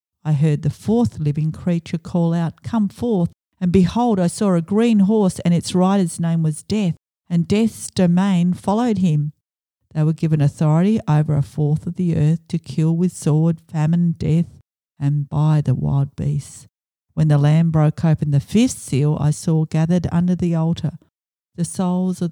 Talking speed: 175 wpm